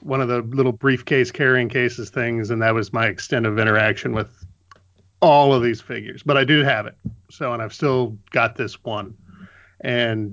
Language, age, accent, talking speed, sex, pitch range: English, 40-59, American, 190 wpm, male, 105-130 Hz